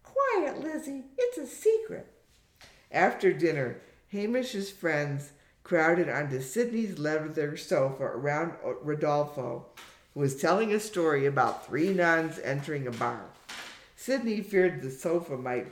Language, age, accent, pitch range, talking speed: English, 60-79, American, 135-185 Hz, 120 wpm